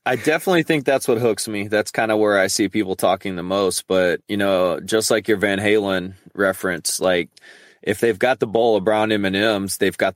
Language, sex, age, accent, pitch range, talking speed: English, male, 20-39, American, 90-105 Hz, 230 wpm